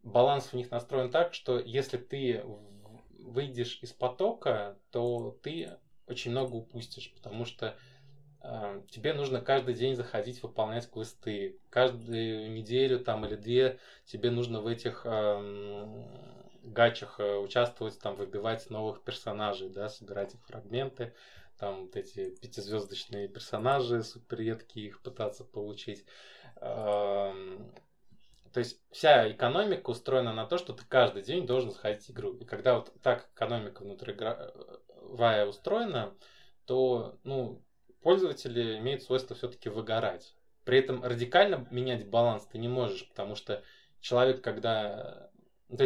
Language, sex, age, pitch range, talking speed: Russian, male, 20-39, 110-130 Hz, 130 wpm